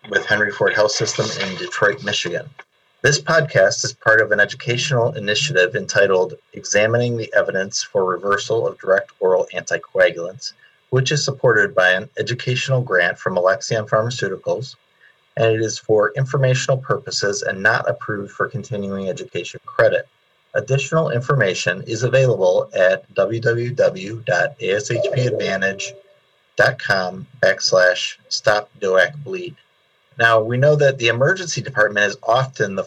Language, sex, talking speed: English, male, 125 wpm